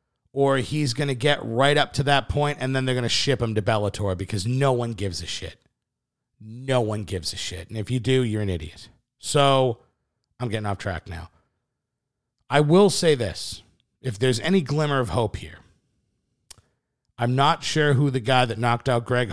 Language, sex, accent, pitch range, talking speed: English, male, American, 110-140 Hz, 200 wpm